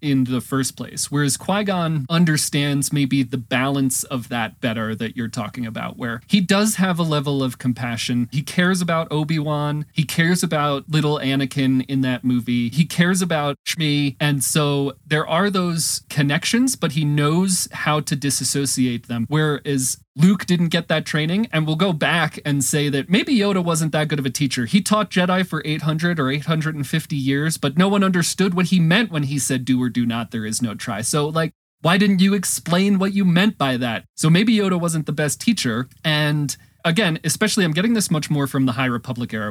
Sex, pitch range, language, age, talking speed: male, 130-165 Hz, English, 30-49, 200 wpm